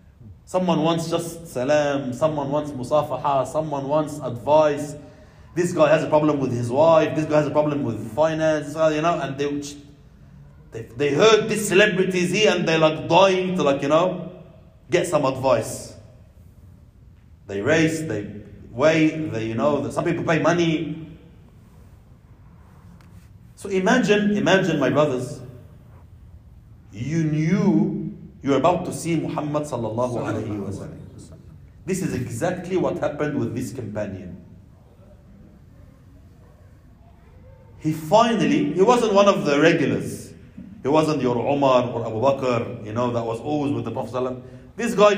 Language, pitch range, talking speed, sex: English, 115-165 Hz, 145 wpm, male